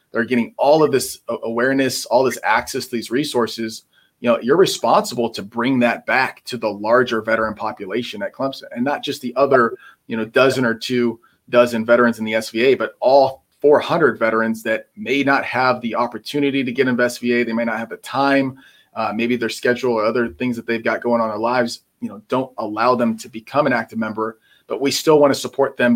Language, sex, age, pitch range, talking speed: English, male, 30-49, 115-130 Hz, 215 wpm